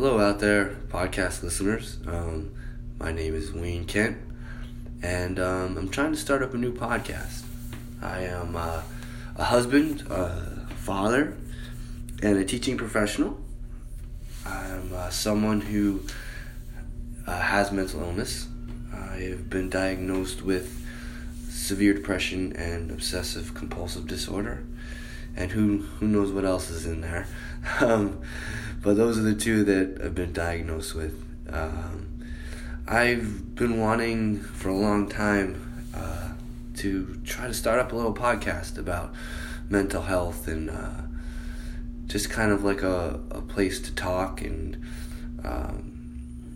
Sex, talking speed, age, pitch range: male, 135 wpm, 20-39, 80-100 Hz